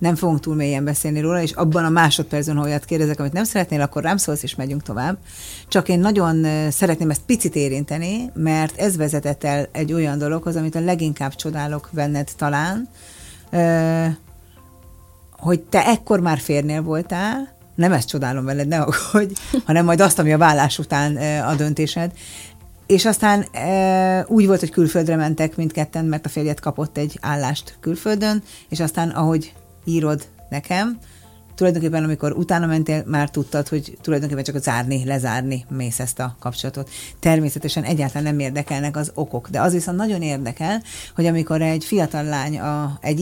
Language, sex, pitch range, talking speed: Hungarian, female, 145-170 Hz, 160 wpm